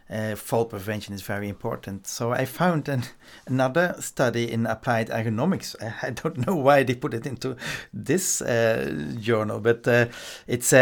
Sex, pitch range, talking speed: male, 110-130 Hz, 165 wpm